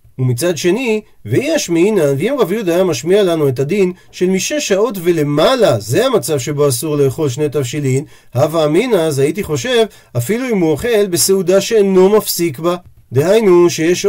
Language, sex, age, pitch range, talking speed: Hebrew, male, 40-59, 145-215 Hz, 160 wpm